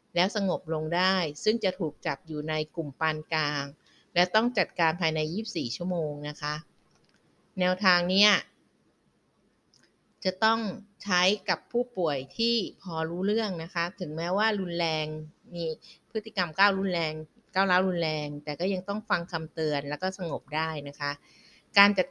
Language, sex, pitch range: Thai, female, 160-200 Hz